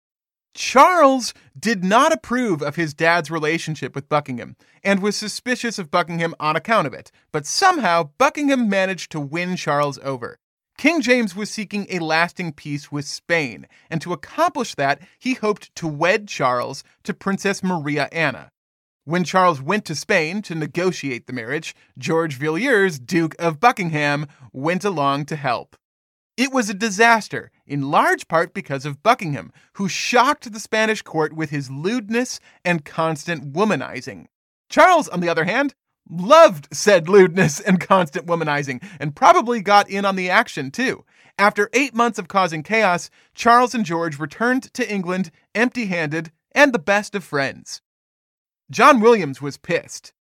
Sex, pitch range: male, 155-220 Hz